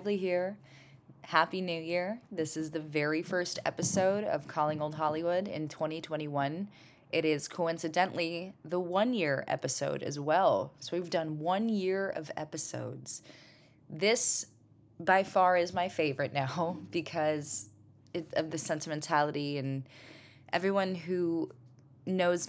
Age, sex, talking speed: 20-39, female, 125 wpm